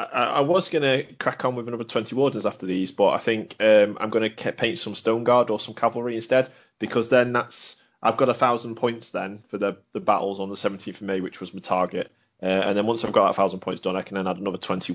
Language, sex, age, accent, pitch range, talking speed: English, male, 30-49, British, 105-130 Hz, 255 wpm